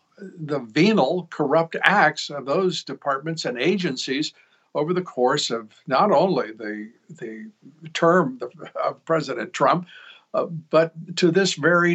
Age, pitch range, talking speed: 60-79, 135-175 Hz, 130 wpm